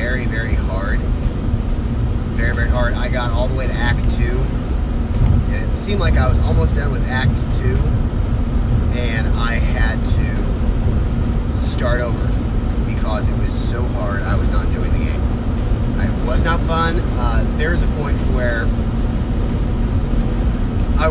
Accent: American